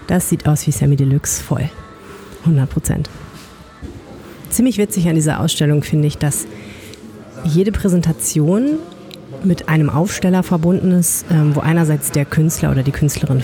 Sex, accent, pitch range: female, German, 135-170 Hz